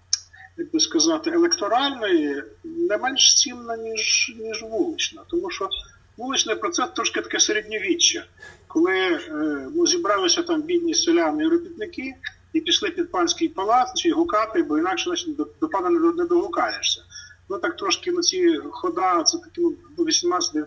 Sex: male